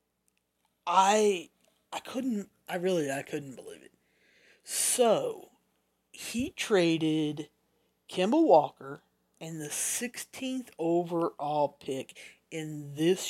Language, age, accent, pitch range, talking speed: English, 40-59, American, 150-175 Hz, 95 wpm